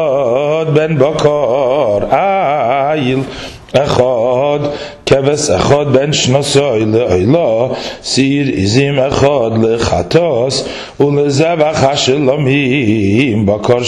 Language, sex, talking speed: English, male, 75 wpm